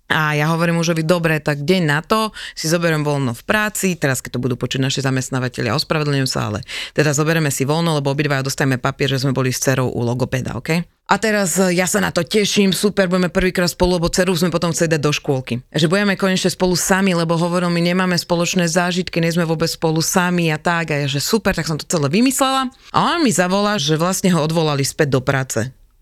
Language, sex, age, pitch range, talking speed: Slovak, female, 30-49, 145-190 Hz, 230 wpm